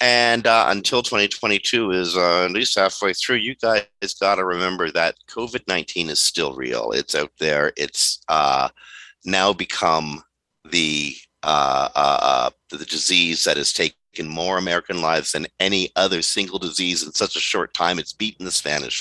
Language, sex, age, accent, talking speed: English, male, 50-69, American, 175 wpm